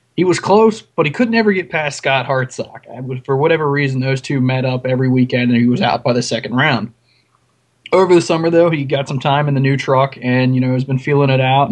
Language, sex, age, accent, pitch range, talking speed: English, male, 20-39, American, 125-150 Hz, 245 wpm